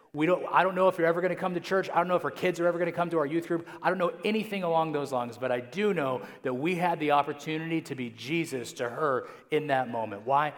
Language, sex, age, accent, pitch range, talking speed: English, male, 30-49, American, 120-150 Hz, 290 wpm